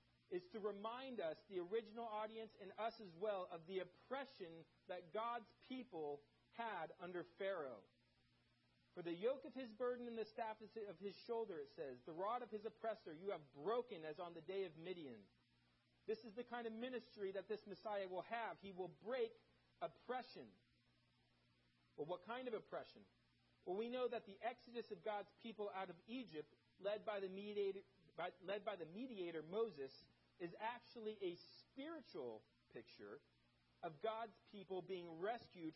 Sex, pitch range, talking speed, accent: male, 150-225 Hz, 160 wpm, American